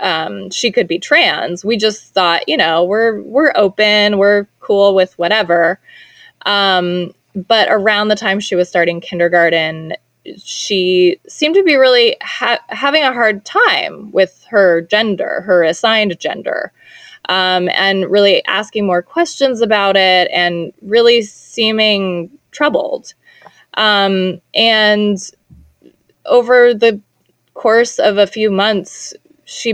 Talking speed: 130 wpm